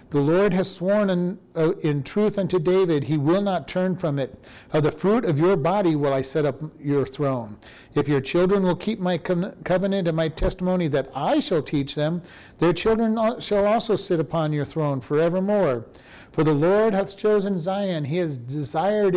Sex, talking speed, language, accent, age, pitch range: male, 190 wpm, English, American, 50-69, 150-195 Hz